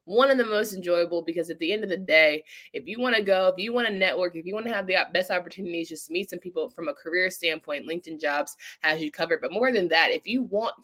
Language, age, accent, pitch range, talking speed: English, 20-39, American, 160-200 Hz, 275 wpm